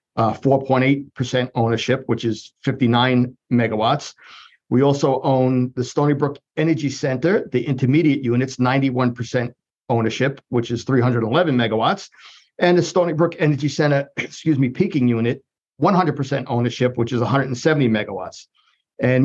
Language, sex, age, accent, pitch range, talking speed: English, male, 50-69, American, 125-145 Hz, 125 wpm